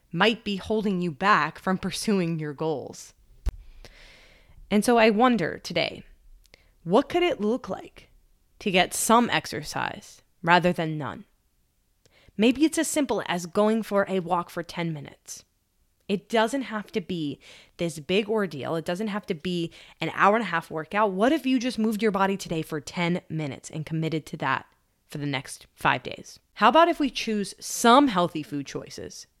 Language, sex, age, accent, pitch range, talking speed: English, female, 20-39, American, 160-215 Hz, 175 wpm